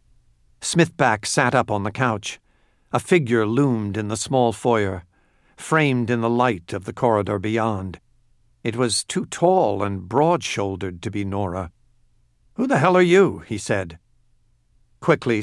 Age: 50-69